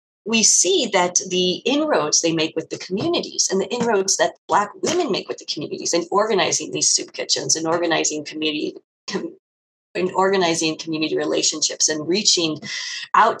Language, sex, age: English, female, 30-49